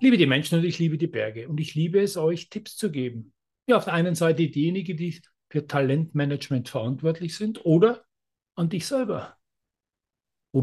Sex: male